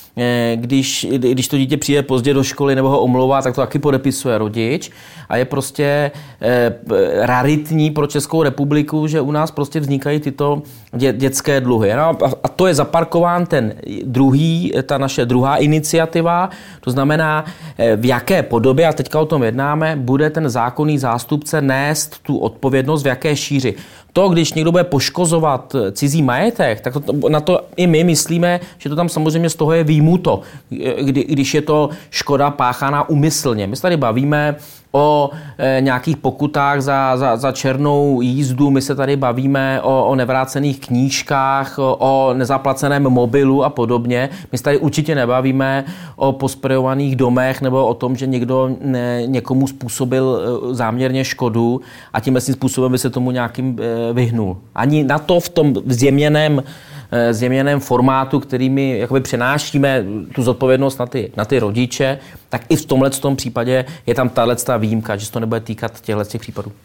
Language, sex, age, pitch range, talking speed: Czech, male, 30-49, 125-150 Hz, 155 wpm